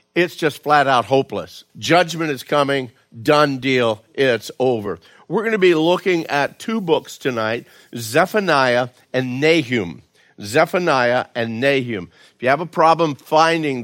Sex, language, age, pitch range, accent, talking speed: male, English, 50-69, 125-160 Hz, American, 140 wpm